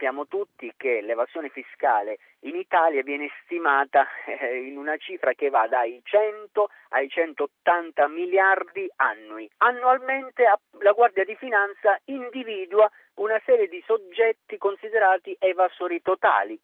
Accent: native